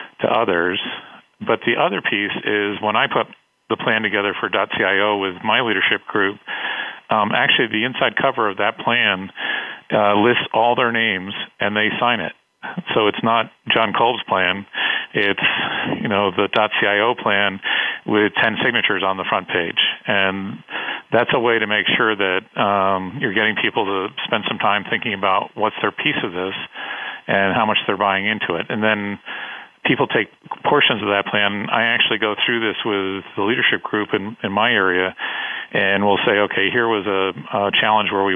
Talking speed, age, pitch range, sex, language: 185 wpm, 40-59, 95-105 Hz, male, English